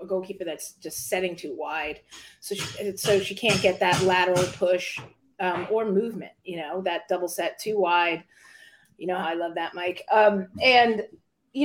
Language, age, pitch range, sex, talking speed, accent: English, 30-49, 185-230 Hz, female, 180 wpm, American